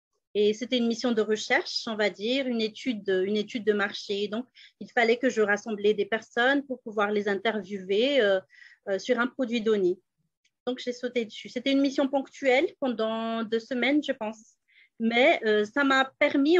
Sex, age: female, 30-49